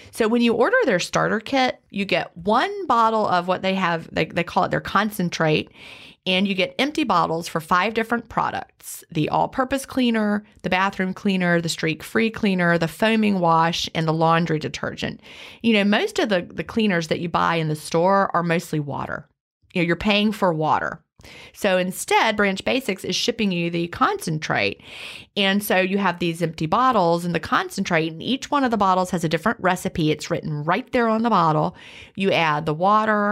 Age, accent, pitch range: 30-49, American, 170-220 Hz